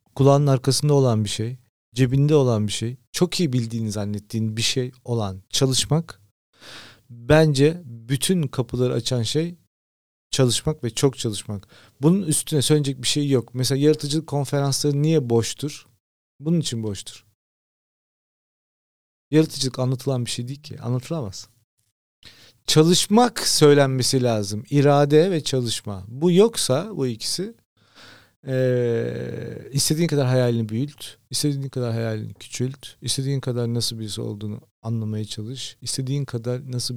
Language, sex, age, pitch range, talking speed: Turkish, male, 40-59, 115-145 Hz, 125 wpm